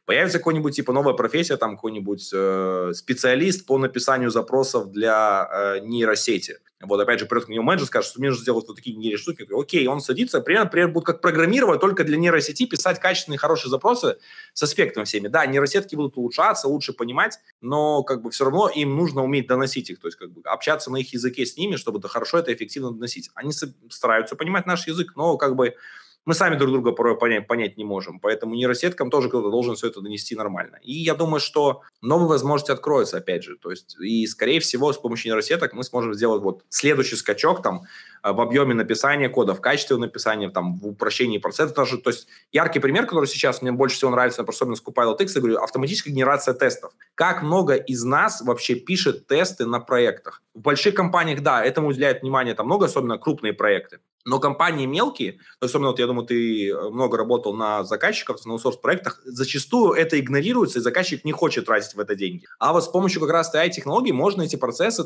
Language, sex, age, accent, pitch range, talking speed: Russian, male, 20-39, native, 120-165 Hz, 200 wpm